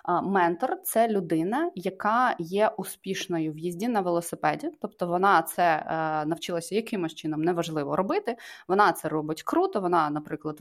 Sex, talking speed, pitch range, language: female, 140 wpm, 170-225 Hz, Ukrainian